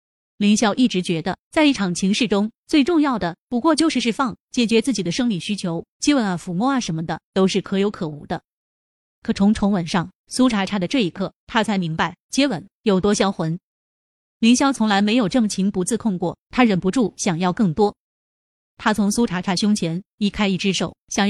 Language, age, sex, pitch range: Chinese, 20-39, female, 185-235 Hz